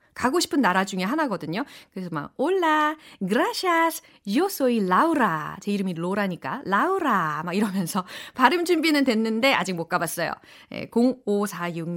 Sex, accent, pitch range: female, native, 180-280 Hz